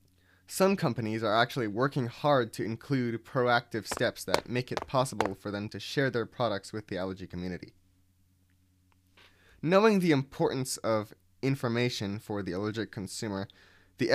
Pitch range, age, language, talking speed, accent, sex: 95-130 Hz, 20-39, English, 145 wpm, American, male